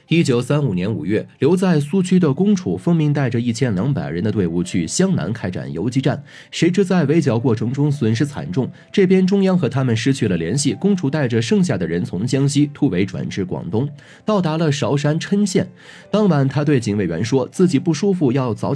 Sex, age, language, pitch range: male, 30-49, Chinese, 115-170 Hz